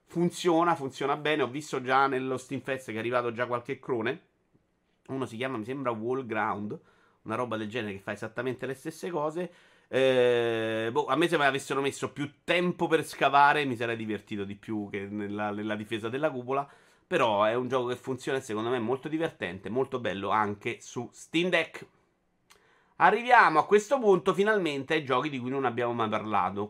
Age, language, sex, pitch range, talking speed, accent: 30-49, Italian, male, 115-155 Hz, 190 wpm, native